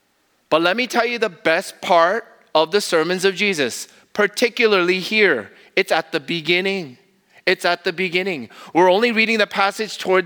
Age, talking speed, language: 30-49, 170 wpm, English